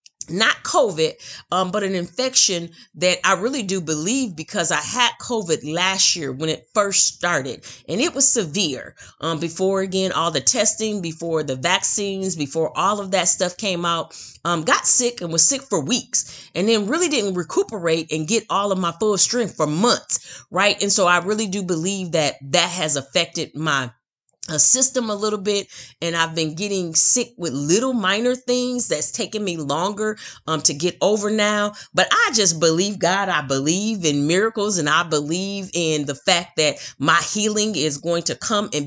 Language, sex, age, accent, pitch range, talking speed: English, female, 30-49, American, 165-220 Hz, 185 wpm